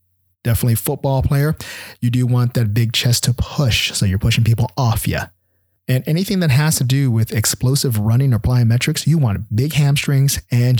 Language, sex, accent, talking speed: English, male, American, 185 wpm